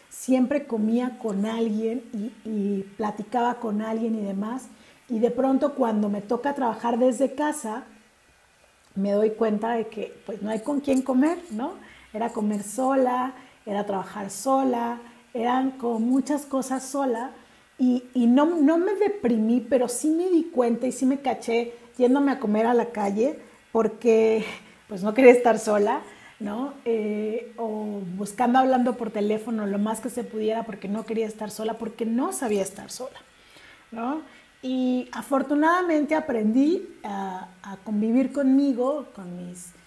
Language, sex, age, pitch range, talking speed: Spanish, female, 40-59, 210-255 Hz, 155 wpm